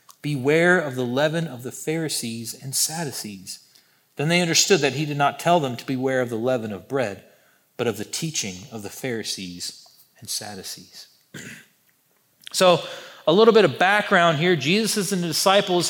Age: 40-59